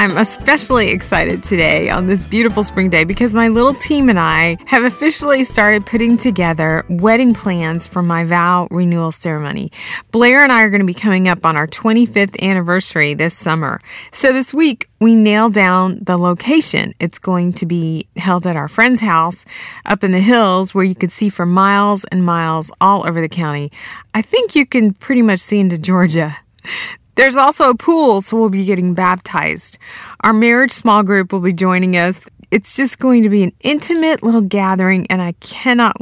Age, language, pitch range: 30-49, English, 180-230 Hz